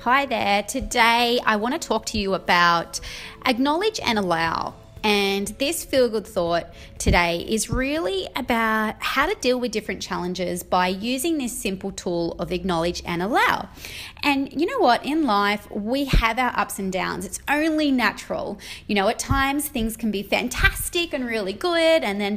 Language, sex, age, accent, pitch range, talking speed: English, female, 20-39, Australian, 190-285 Hz, 170 wpm